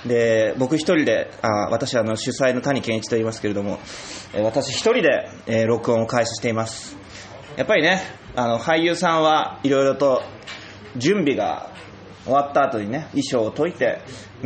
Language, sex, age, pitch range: Japanese, male, 20-39, 110-150 Hz